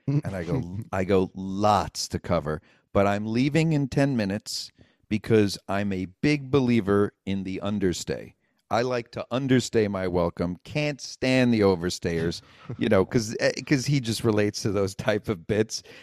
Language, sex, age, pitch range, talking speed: English, male, 50-69, 105-150 Hz, 165 wpm